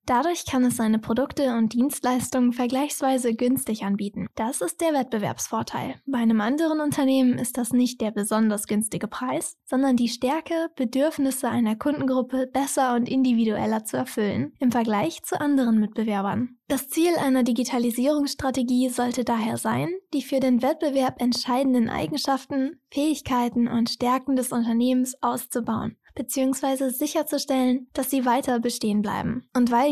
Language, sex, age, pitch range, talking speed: German, female, 10-29, 235-270 Hz, 140 wpm